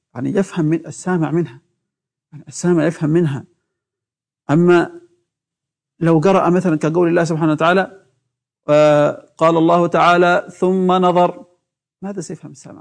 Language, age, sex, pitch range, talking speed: Arabic, 50-69, male, 150-180 Hz, 115 wpm